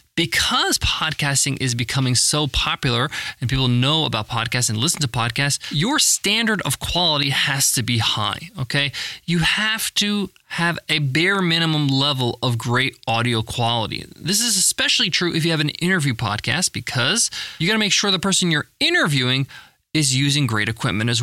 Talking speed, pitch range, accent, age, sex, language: 170 wpm, 130-175 Hz, American, 20-39, male, English